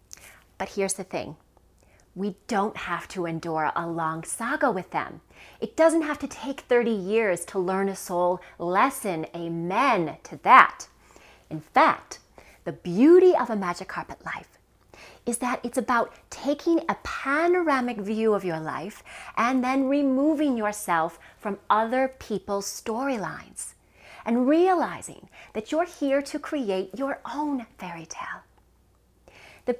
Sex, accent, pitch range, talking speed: female, American, 180-270 Hz, 140 wpm